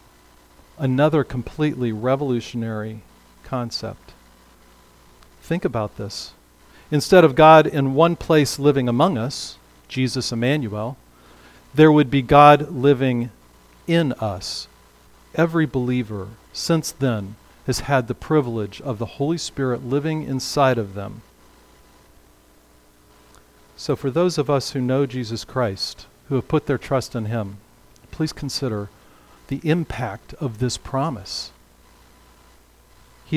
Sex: male